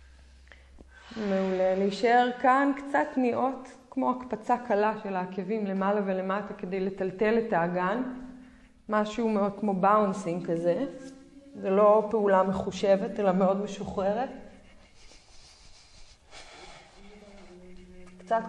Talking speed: 95 wpm